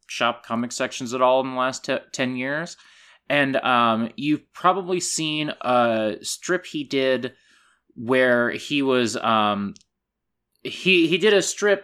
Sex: male